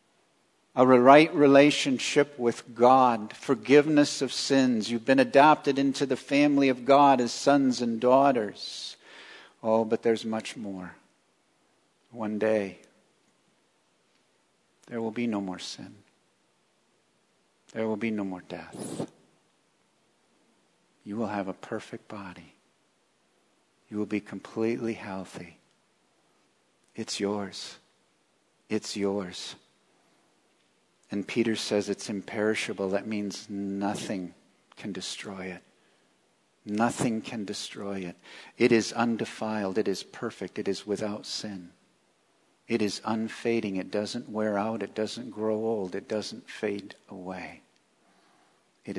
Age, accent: 50-69, American